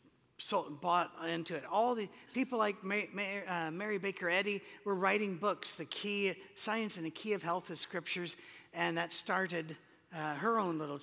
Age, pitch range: 50-69, 160-215 Hz